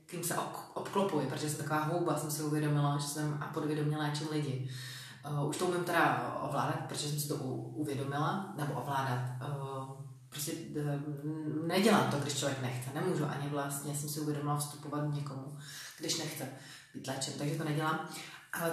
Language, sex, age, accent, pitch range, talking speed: Czech, female, 30-49, native, 145-160 Hz, 160 wpm